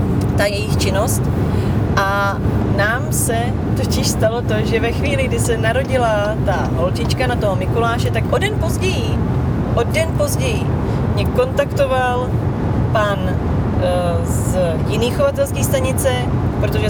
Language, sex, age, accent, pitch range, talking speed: Czech, female, 30-49, native, 100-120 Hz, 130 wpm